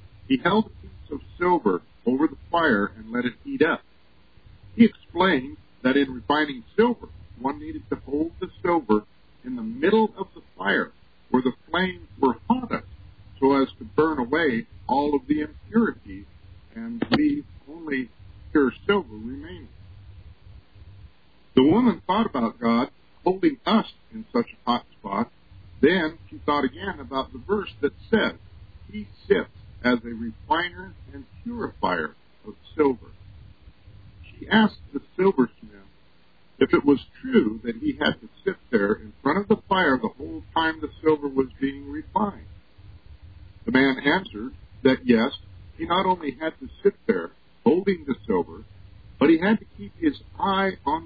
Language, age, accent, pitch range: English, 50-69, American, 100-165 Hz